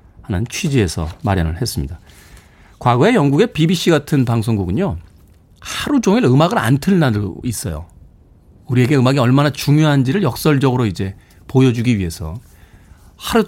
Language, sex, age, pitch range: Korean, male, 40-59, 100-155 Hz